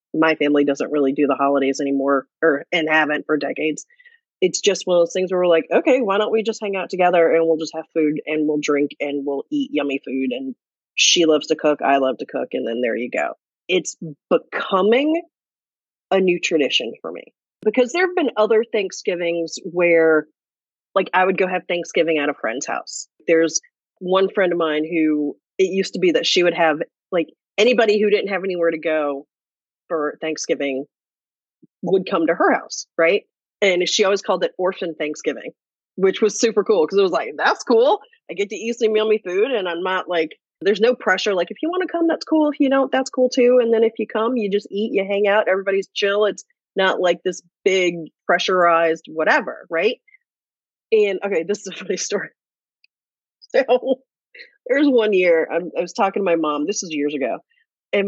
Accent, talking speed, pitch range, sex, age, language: American, 205 wpm, 160-225 Hz, female, 30-49, English